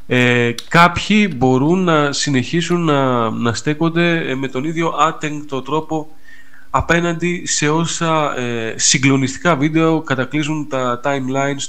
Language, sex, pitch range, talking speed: Greek, male, 110-145 Hz, 115 wpm